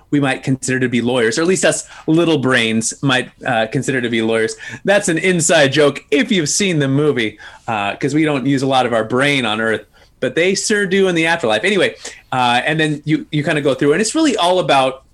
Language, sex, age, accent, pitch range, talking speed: English, male, 30-49, American, 120-150 Hz, 240 wpm